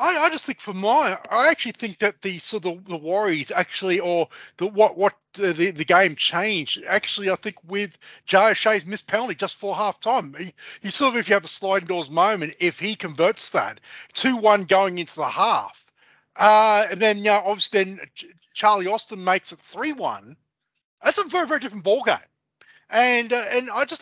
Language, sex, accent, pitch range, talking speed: English, male, Australian, 195-245 Hz, 200 wpm